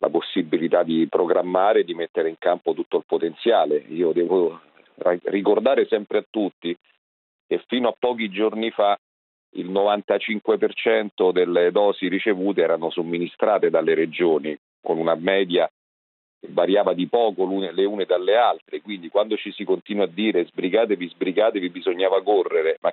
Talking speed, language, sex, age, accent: 145 wpm, Italian, male, 40-59, native